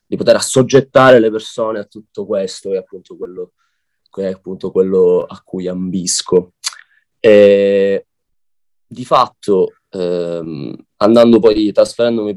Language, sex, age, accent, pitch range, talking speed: Italian, male, 20-39, native, 95-135 Hz, 120 wpm